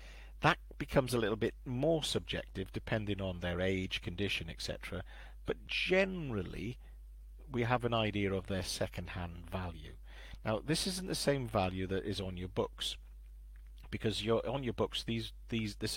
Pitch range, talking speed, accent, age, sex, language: 85-110 Hz, 145 wpm, British, 50-69, male, English